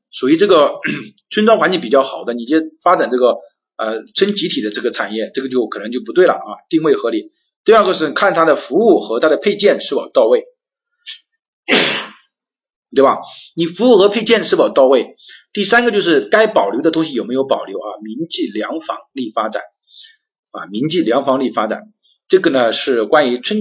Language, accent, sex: Chinese, native, male